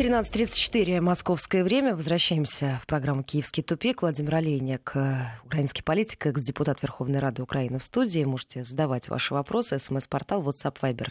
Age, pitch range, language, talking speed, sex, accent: 20-39, 145-210 Hz, Russian, 135 wpm, female, native